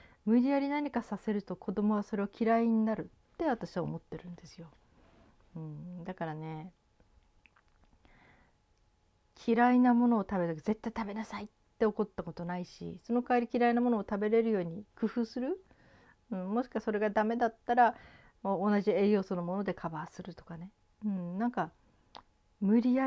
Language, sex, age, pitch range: Japanese, female, 40-59, 170-225 Hz